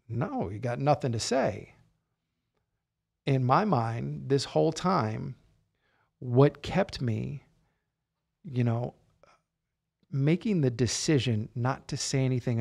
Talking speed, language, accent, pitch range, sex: 115 wpm, English, American, 110-140 Hz, male